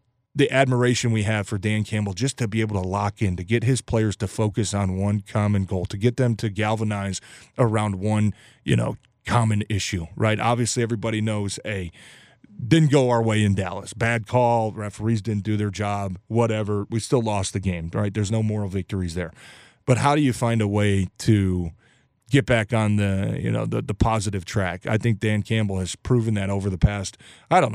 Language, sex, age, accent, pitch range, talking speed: English, male, 30-49, American, 100-120 Hz, 205 wpm